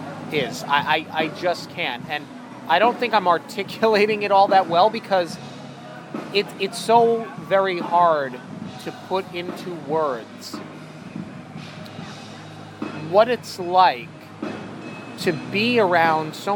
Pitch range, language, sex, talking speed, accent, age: 155-195 Hz, English, male, 110 wpm, American, 30-49